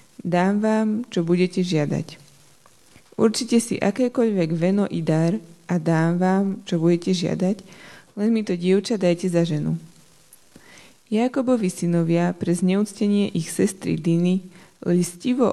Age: 20-39